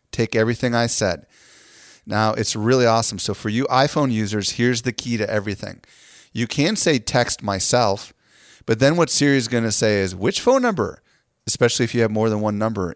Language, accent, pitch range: English, American, 95-120 Hz